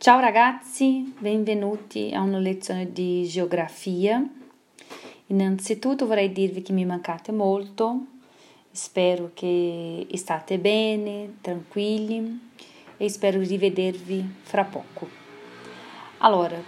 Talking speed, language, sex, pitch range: 95 wpm, Italian, female, 175-225 Hz